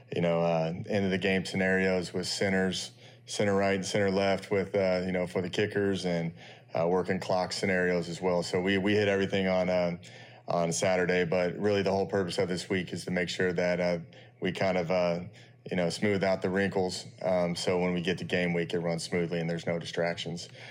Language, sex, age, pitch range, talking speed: English, male, 30-49, 90-100 Hz, 225 wpm